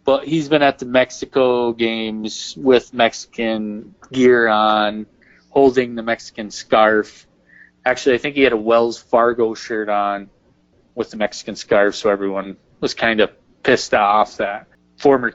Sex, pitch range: male, 105-130 Hz